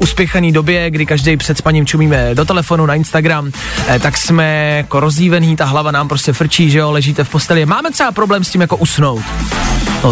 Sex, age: male, 20-39